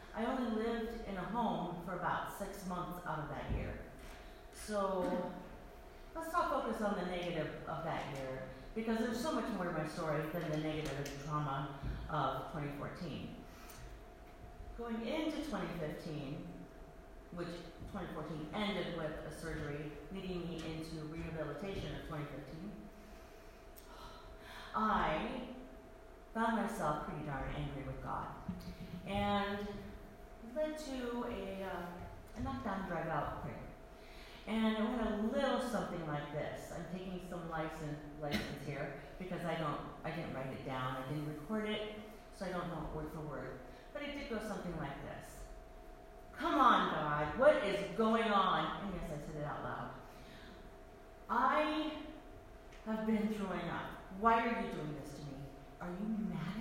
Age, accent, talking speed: 40-59, American, 150 wpm